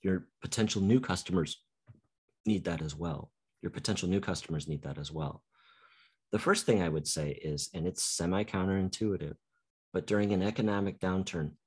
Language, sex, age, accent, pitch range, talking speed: English, male, 30-49, American, 75-95 Hz, 160 wpm